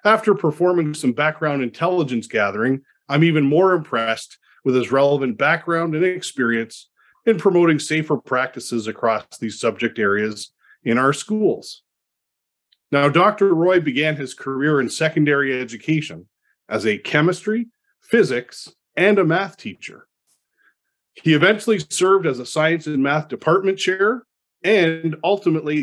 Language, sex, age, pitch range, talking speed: English, male, 40-59, 130-180 Hz, 130 wpm